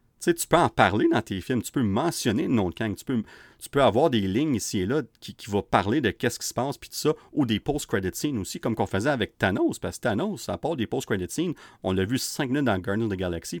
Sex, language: male, French